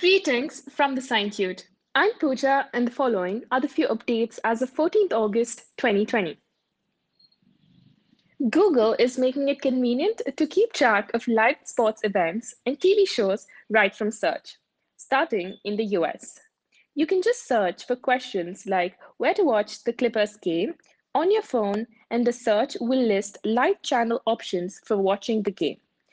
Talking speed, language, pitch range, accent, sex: 155 wpm, English, 210-290 Hz, Indian, female